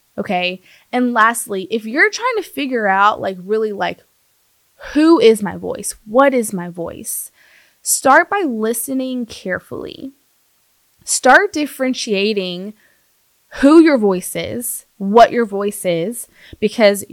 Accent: American